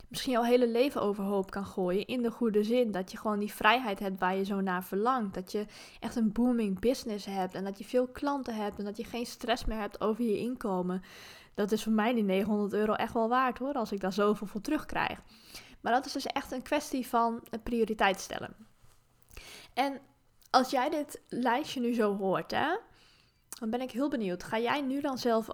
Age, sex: 20-39, female